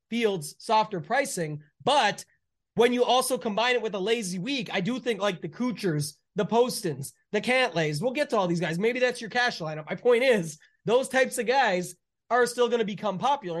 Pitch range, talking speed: 185-230 Hz, 205 wpm